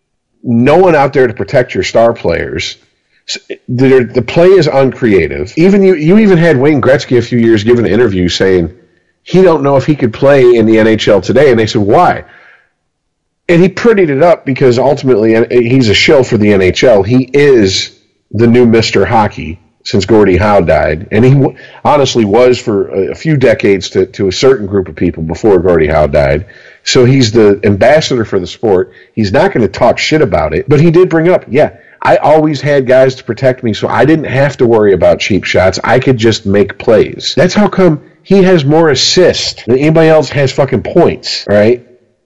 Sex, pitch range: male, 115-155 Hz